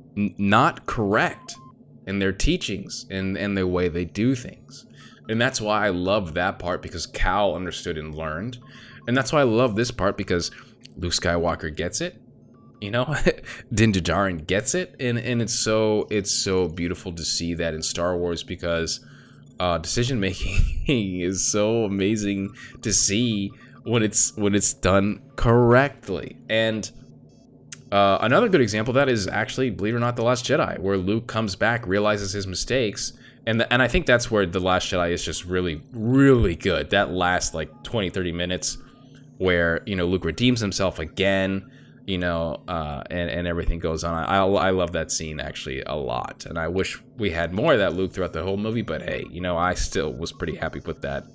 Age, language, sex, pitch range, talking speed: 20-39, English, male, 90-120 Hz, 185 wpm